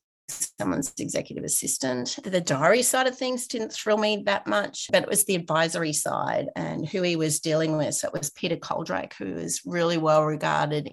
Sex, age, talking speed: female, 30-49, 190 wpm